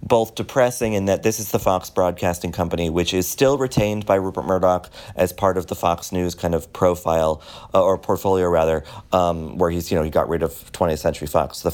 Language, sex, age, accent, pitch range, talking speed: English, male, 30-49, American, 85-110 Hz, 220 wpm